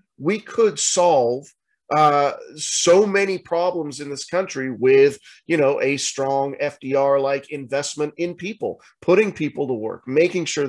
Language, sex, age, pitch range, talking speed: English, male, 30-49, 130-165 Hz, 145 wpm